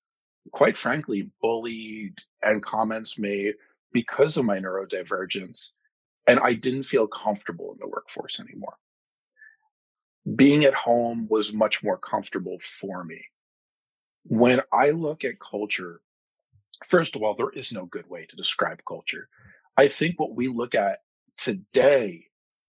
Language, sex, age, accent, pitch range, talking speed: English, male, 40-59, American, 110-145 Hz, 135 wpm